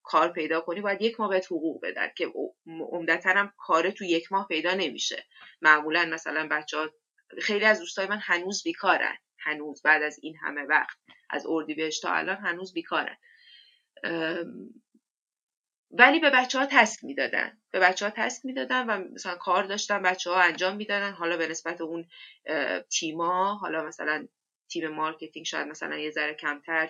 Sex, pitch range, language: female, 155-215 Hz, Persian